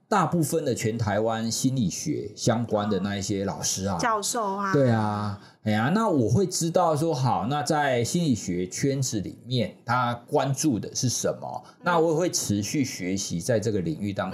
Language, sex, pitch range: Chinese, male, 105-155 Hz